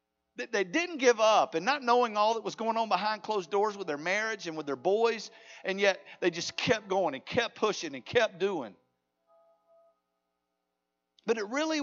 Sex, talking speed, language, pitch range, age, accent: male, 190 wpm, English, 200-275 Hz, 50-69, American